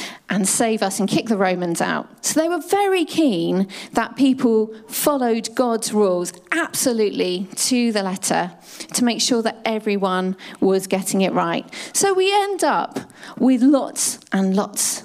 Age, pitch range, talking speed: 40-59, 190-265 Hz, 155 wpm